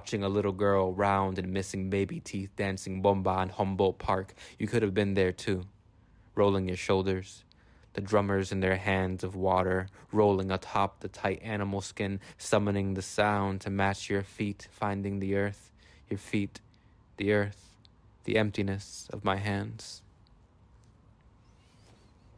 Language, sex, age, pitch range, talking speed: English, male, 20-39, 95-105 Hz, 145 wpm